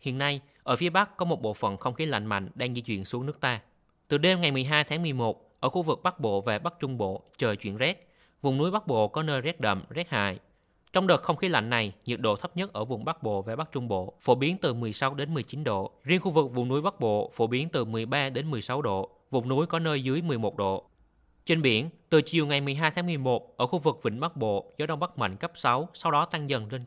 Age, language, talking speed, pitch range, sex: 20-39, Vietnamese, 265 wpm, 115-160 Hz, male